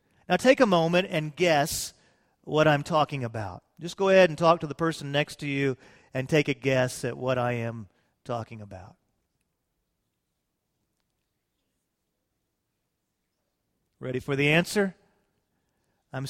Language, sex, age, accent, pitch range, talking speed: English, male, 40-59, American, 135-175 Hz, 135 wpm